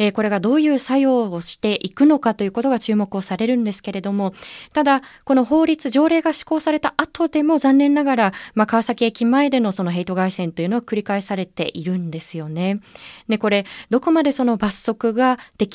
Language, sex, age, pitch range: Japanese, female, 20-39, 195-270 Hz